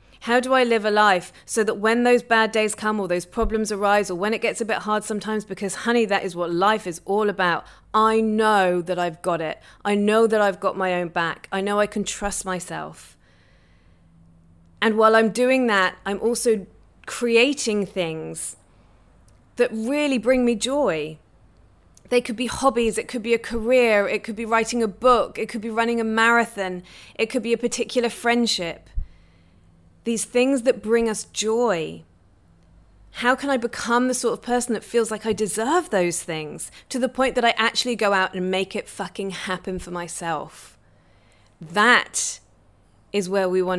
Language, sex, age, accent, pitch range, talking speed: English, female, 30-49, British, 170-230 Hz, 185 wpm